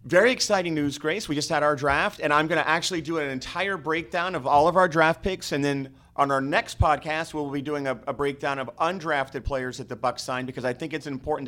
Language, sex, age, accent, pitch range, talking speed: English, male, 40-59, American, 130-165 Hz, 250 wpm